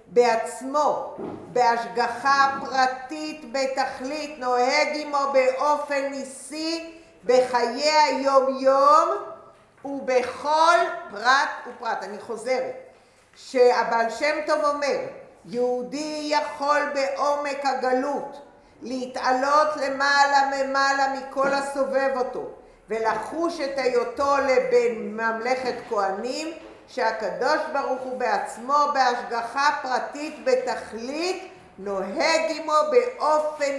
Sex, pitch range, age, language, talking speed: female, 240-295 Hz, 50-69, English, 80 wpm